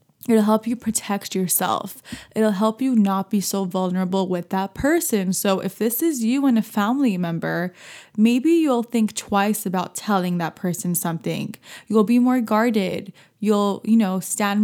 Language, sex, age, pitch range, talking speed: English, female, 20-39, 190-230 Hz, 170 wpm